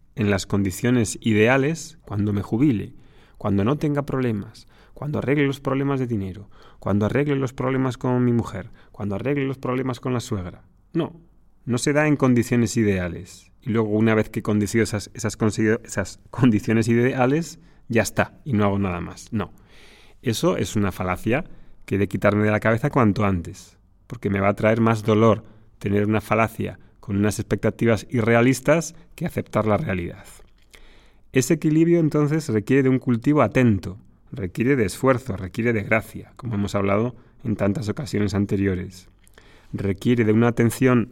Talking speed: 170 wpm